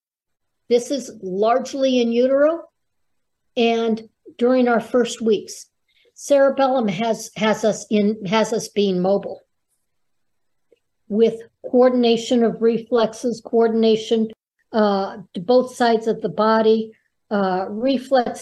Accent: American